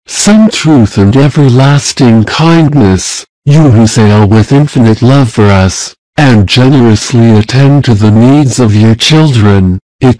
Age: 60-79